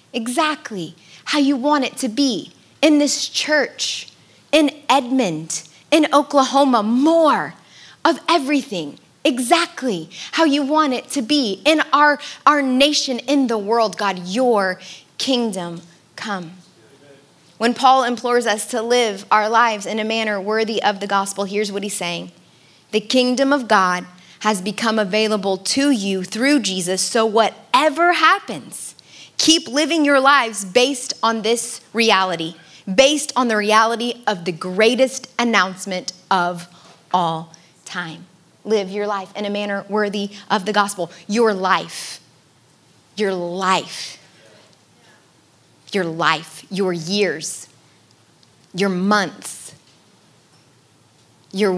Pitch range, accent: 185-265 Hz, American